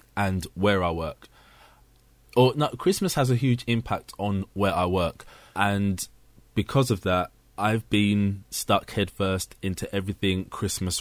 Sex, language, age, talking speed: male, English, 20-39, 140 wpm